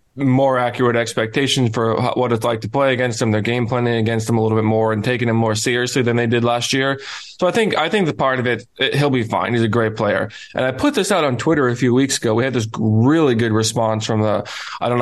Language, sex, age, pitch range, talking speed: English, male, 20-39, 110-130 Hz, 270 wpm